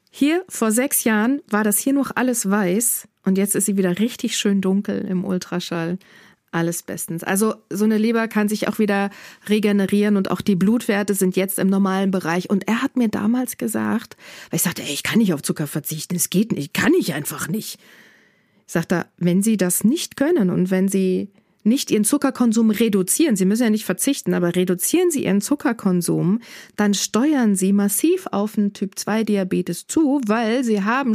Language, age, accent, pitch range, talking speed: German, 40-59, German, 185-220 Hz, 185 wpm